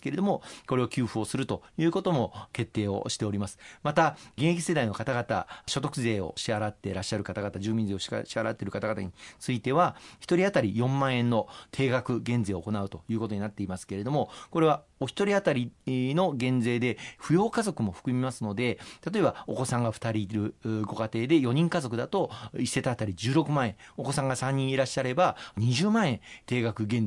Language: Japanese